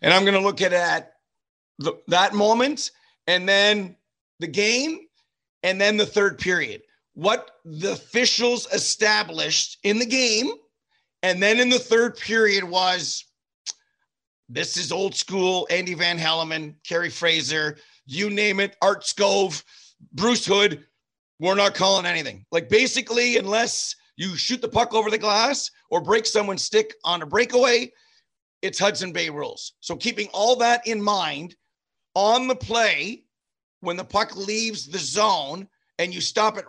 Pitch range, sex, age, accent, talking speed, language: 185-235 Hz, male, 40-59, American, 155 wpm, English